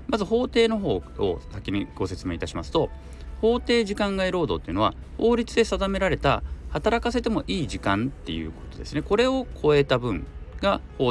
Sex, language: male, Japanese